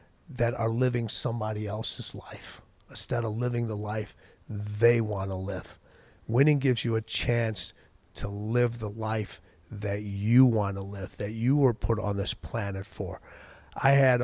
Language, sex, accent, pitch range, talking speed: English, male, American, 95-120 Hz, 165 wpm